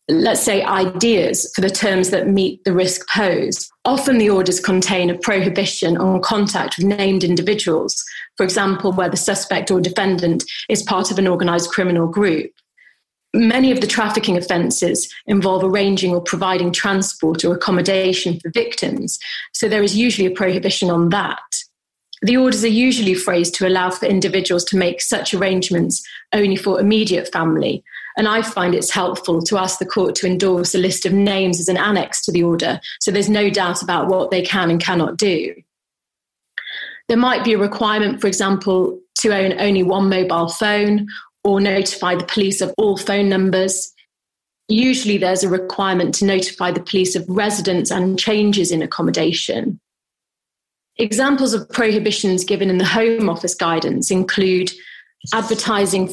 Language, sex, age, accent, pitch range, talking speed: English, female, 30-49, British, 185-210 Hz, 165 wpm